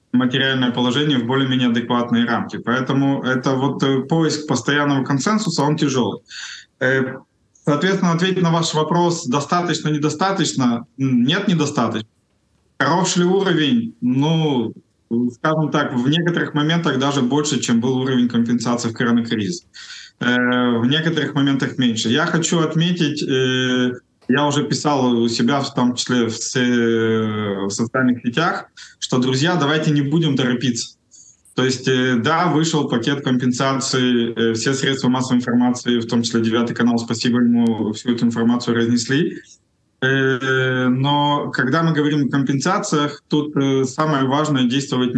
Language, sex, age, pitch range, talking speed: Russian, male, 20-39, 120-150 Hz, 125 wpm